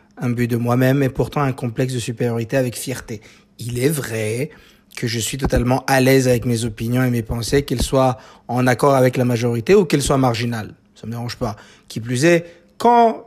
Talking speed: 210 wpm